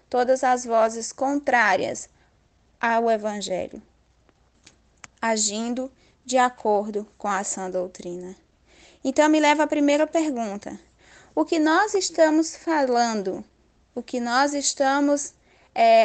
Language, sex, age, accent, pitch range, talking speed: Portuguese, female, 10-29, Brazilian, 240-300 Hz, 110 wpm